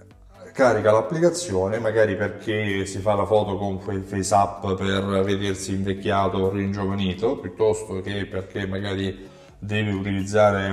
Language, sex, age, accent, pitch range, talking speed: Italian, male, 20-39, native, 95-110 Hz, 125 wpm